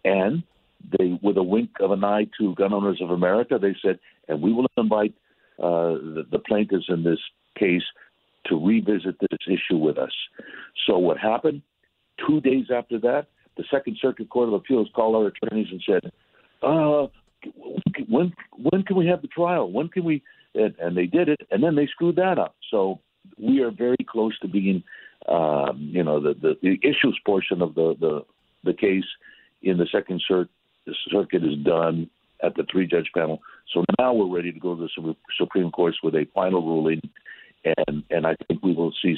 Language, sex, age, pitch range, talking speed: English, male, 60-79, 90-120 Hz, 190 wpm